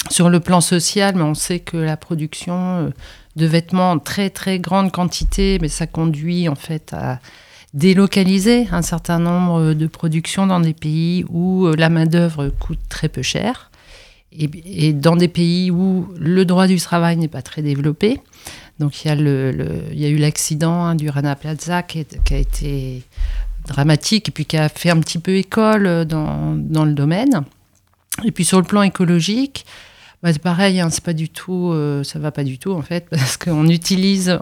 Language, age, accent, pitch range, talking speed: French, 50-69, French, 155-185 Hz, 190 wpm